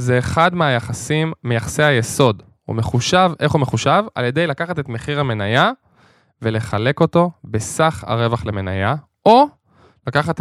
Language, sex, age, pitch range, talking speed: Hebrew, male, 10-29, 115-165 Hz, 135 wpm